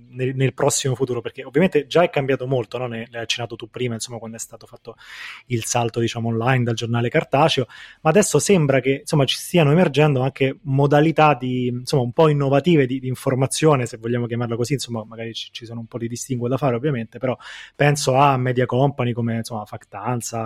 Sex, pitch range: male, 120-140 Hz